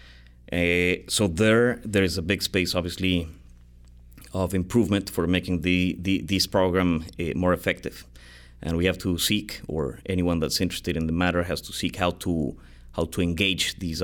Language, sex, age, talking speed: English, male, 30-49, 175 wpm